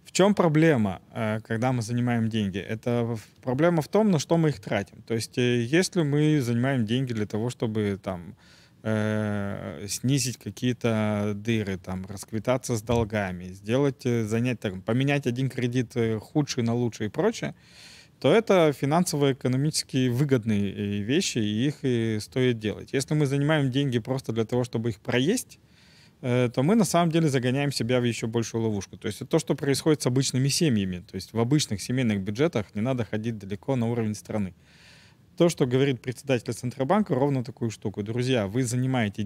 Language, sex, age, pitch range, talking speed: Russian, male, 20-39, 110-140 Hz, 160 wpm